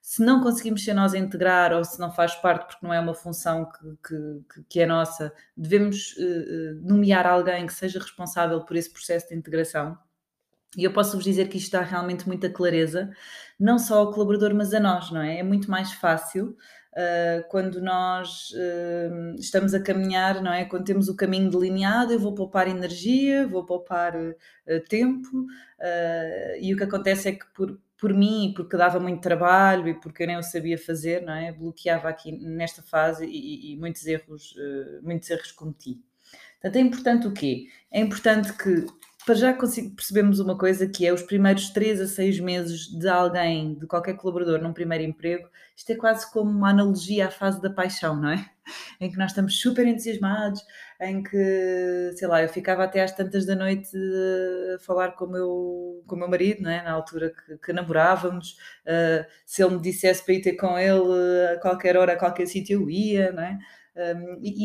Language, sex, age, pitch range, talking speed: Portuguese, female, 20-39, 170-200 Hz, 195 wpm